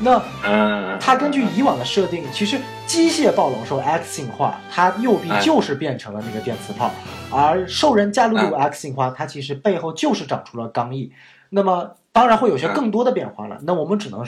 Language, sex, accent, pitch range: Chinese, male, native, 135-205 Hz